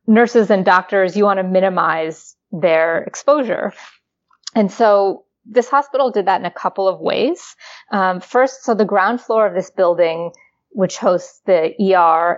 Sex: female